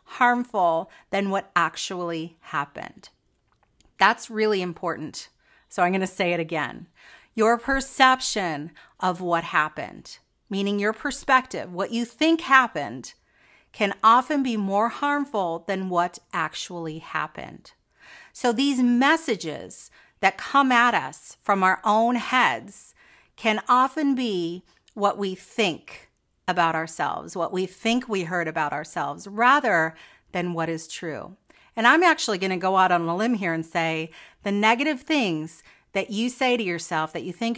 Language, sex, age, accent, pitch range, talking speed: English, female, 40-59, American, 175-255 Hz, 145 wpm